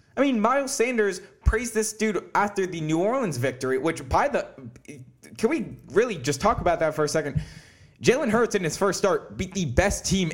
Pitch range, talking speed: 140-210 Hz, 205 wpm